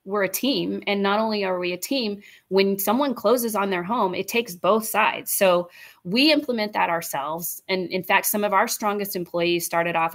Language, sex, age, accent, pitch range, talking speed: English, female, 30-49, American, 170-210 Hz, 205 wpm